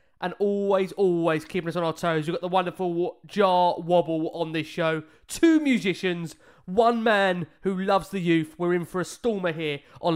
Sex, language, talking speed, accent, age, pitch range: male, English, 190 wpm, British, 20-39, 180-230 Hz